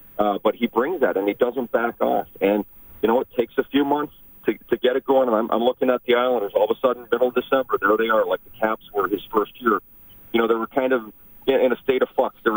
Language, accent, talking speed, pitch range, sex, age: English, American, 280 wpm, 110-135 Hz, male, 40-59